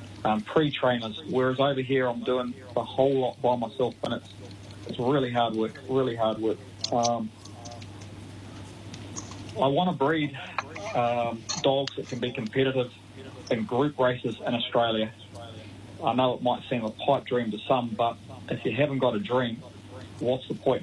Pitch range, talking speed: 105-130 Hz, 165 wpm